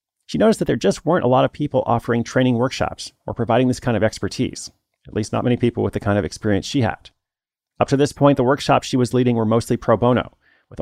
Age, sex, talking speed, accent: 30-49, male, 250 wpm, American